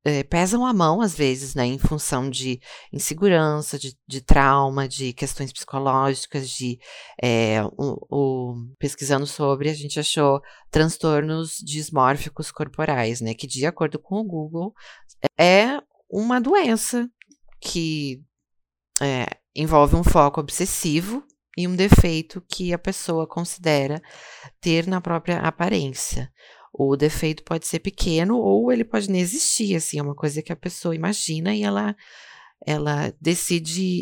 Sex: female